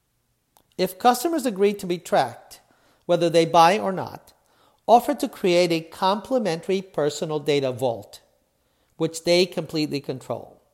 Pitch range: 140-190 Hz